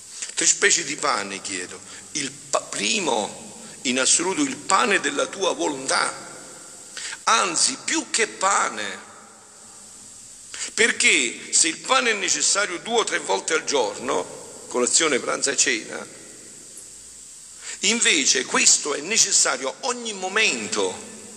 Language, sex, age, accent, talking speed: Italian, male, 50-69, native, 120 wpm